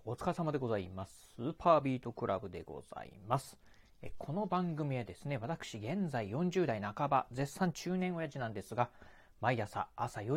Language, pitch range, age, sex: Japanese, 110-155 Hz, 30-49, male